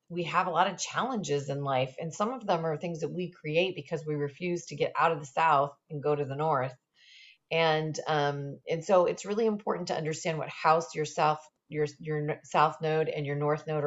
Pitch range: 150-190 Hz